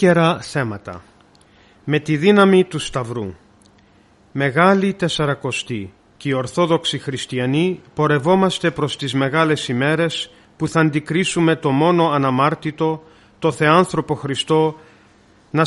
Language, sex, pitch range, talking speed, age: Greek, male, 115-170 Hz, 105 wpm, 40-59